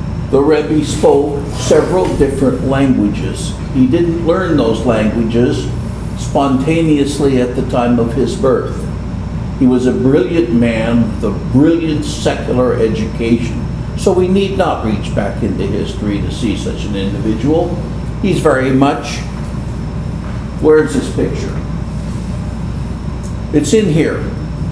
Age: 60-79